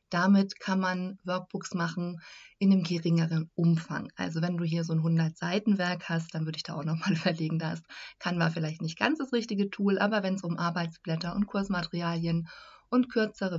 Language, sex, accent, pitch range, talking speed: German, female, German, 165-215 Hz, 195 wpm